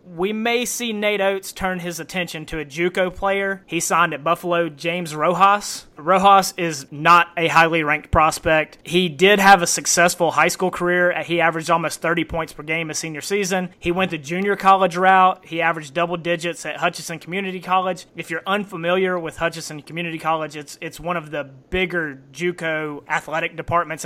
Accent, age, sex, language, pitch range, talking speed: American, 30-49, male, English, 160-185 Hz, 180 wpm